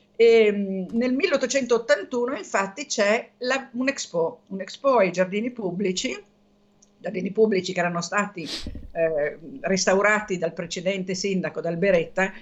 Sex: female